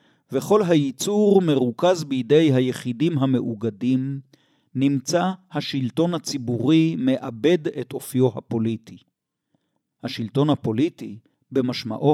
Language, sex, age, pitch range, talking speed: Hebrew, male, 50-69, 125-165 Hz, 80 wpm